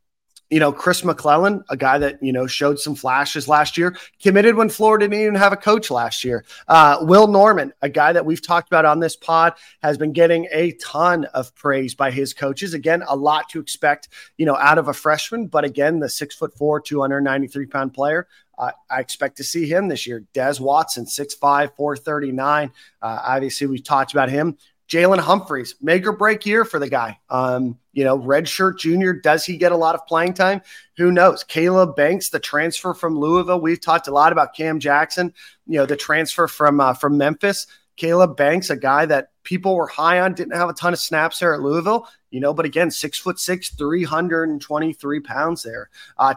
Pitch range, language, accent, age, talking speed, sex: 140-175 Hz, English, American, 30-49, 210 wpm, male